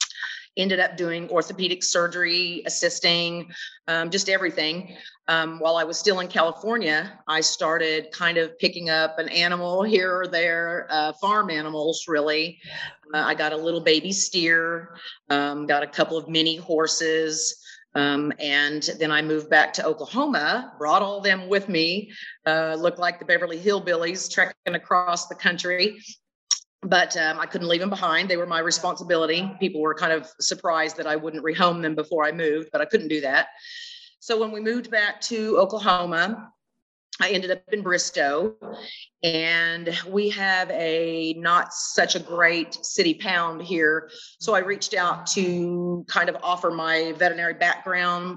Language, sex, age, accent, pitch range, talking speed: English, female, 40-59, American, 160-190 Hz, 165 wpm